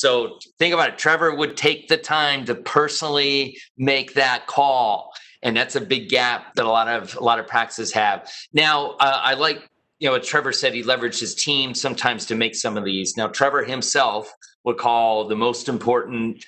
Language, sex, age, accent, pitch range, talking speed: English, male, 40-59, American, 115-145 Hz, 200 wpm